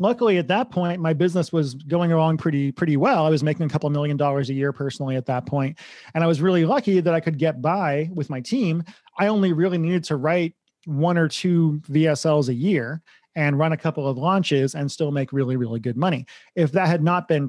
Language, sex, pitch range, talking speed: English, male, 140-185 Hz, 235 wpm